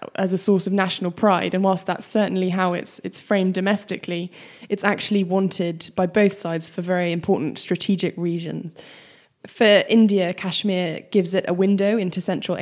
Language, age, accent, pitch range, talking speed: English, 10-29, British, 175-200 Hz, 165 wpm